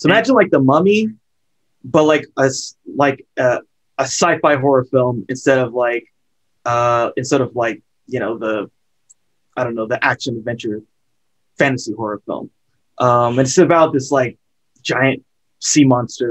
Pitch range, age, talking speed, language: 115-140 Hz, 20-39, 155 wpm, English